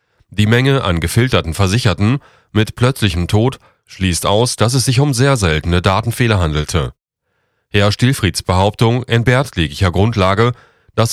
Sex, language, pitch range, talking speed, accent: male, German, 95-120 Hz, 135 wpm, German